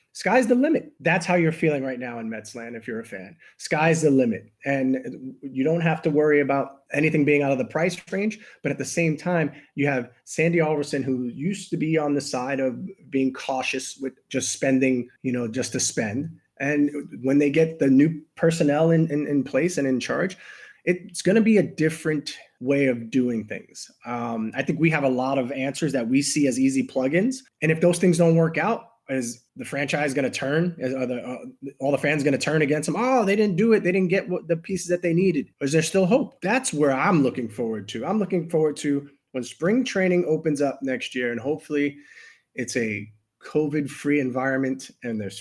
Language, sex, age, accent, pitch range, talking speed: English, male, 30-49, American, 130-165 Hz, 215 wpm